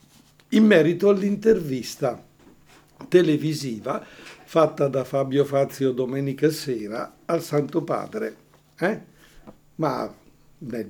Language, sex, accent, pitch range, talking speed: Italian, male, native, 135-155 Hz, 90 wpm